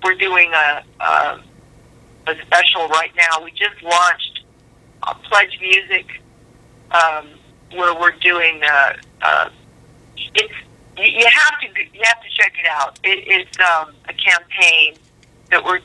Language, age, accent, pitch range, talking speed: English, 50-69, American, 150-185 Hz, 145 wpm